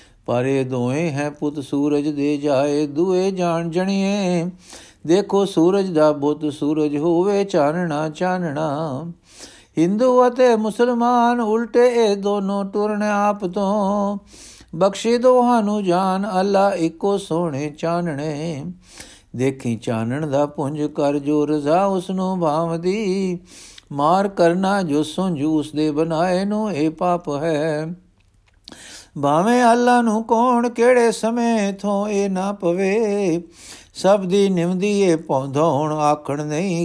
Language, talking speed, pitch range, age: Punjabi, 115 wpm, 150-200 Hz, 60-79